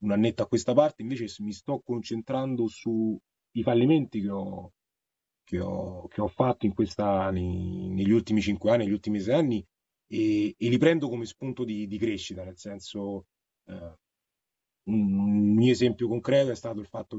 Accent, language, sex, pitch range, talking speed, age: native, Italian, male, 95-120 Hz, 165 wpm, 30-49